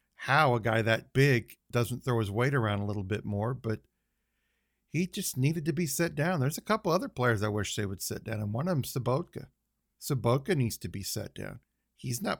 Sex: male